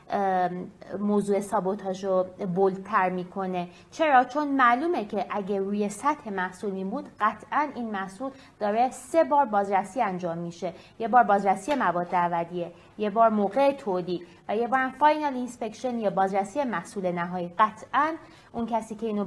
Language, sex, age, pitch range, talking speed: English, female, 30-49, 190-260 Hz, 145 wpm